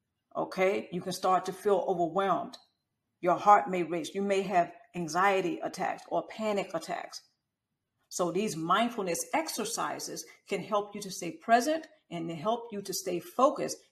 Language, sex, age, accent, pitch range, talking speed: English, female, 50-69, American, 175-245 Hz, 150 wpm